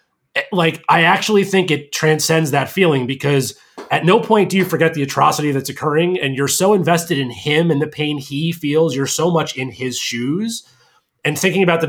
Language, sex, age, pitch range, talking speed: English, male, 30-49, 130-175 Hz, 200 wpm